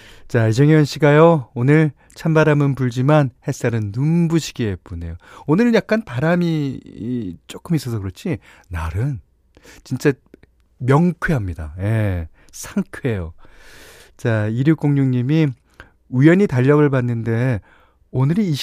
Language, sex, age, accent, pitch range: Korean, male, 40-59, native, 95-150 Hz